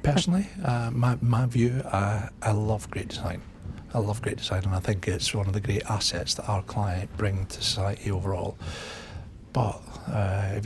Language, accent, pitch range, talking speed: English, British, 95-110 Hz, 185 wpm